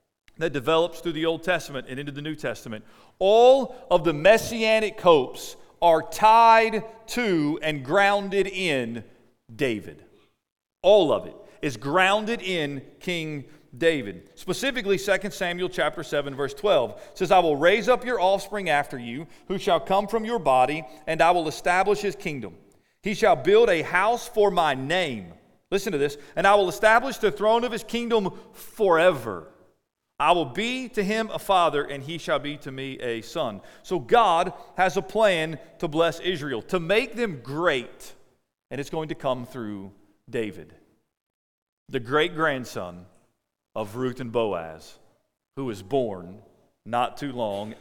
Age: 40-59